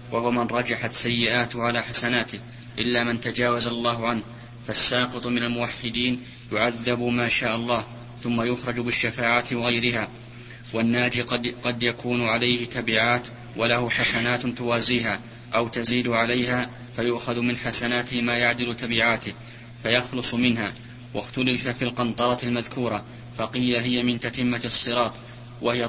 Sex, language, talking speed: male, Arabic, 120 wpm